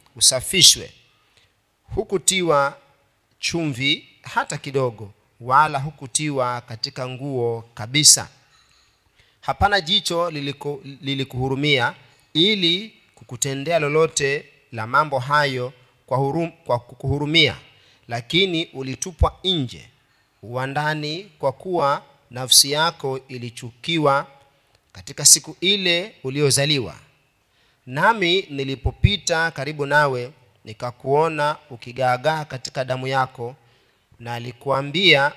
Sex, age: male, 40-59